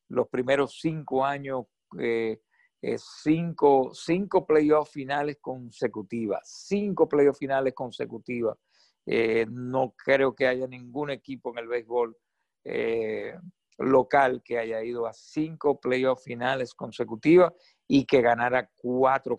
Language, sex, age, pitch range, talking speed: Spanish, male, 50-69, 120-140 Hz, 120 wpm